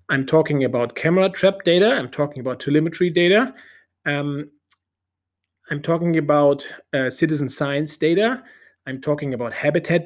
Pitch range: 140-180 Hz